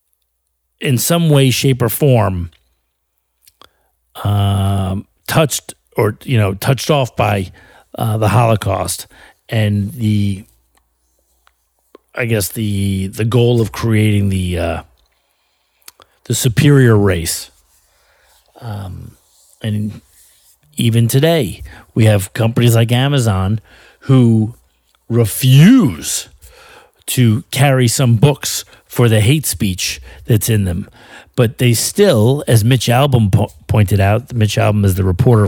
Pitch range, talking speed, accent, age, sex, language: 100-135 Hz, 115 wpm, American, 40-59, male, English